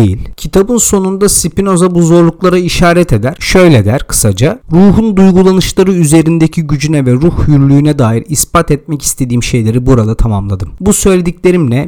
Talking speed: 135 wpm